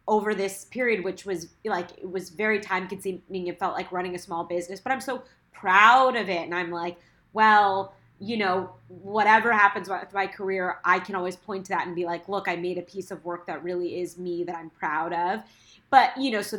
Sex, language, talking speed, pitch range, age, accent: female, English, 230 wpm, 180-210 Hz, 20-39, American